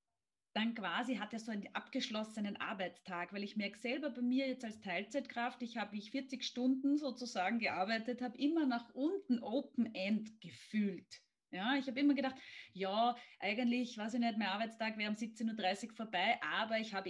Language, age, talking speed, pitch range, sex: German, 30-49, 175 wpm, 205-245 Hz, female